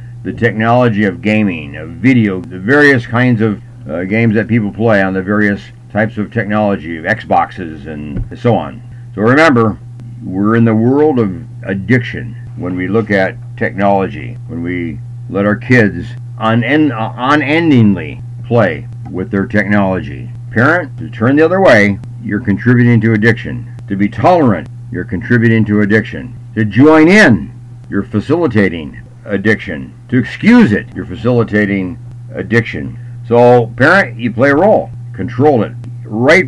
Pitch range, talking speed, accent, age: 110-125 Hz, 145 wpm, American, 60-79